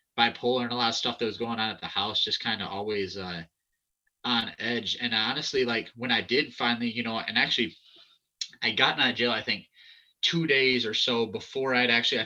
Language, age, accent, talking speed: English, 30-49, American, 220 wpm